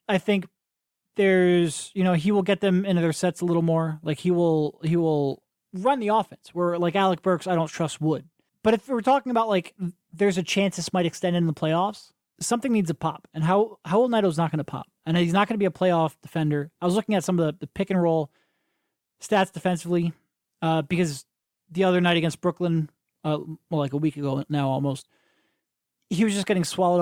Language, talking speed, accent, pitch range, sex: English, 220 wpm, American, 155-190 Hz, male